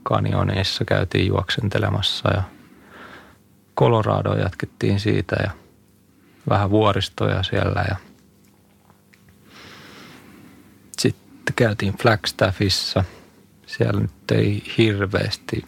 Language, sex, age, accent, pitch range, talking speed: Finnish, male, 30-49, native, 95-105 Hz, 75 wpm